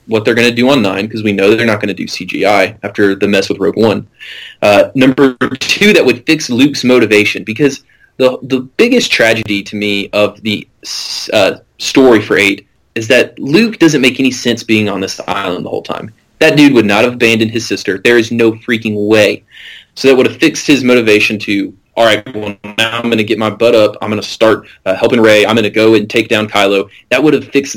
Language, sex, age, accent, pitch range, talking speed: English, male, 20-39, American, 105-140 Hz, 235 wpm